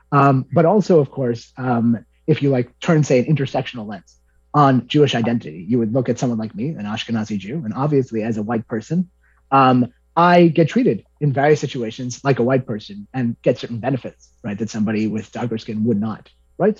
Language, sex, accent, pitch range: English, male, American, 110-140 Hz